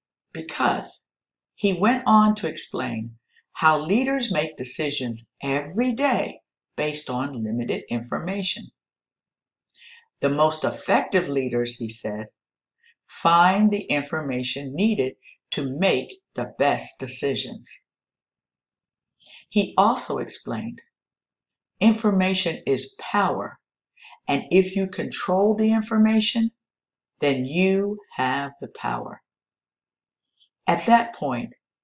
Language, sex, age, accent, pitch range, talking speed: English, female, 60-79, American, 135-215 Hz, 95 wpm